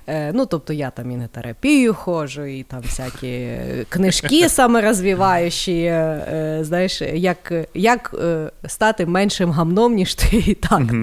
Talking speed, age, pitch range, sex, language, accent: 125 wpm, 30-49, 155-210 Hz, female, Ukrainian, native